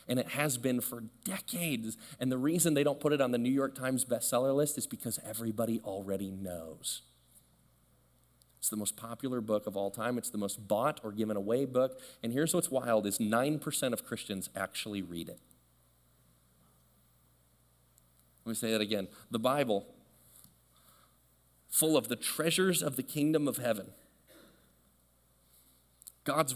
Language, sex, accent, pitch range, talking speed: English, male, American, 100-150 Hz, 155 wpm